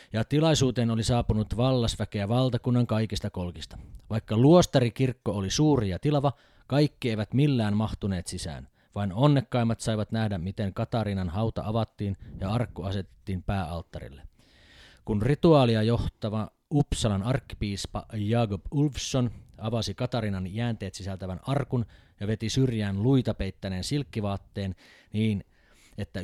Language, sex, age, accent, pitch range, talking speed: Finnish, male, 30-49, native, 95-120 Hz, 115 wpm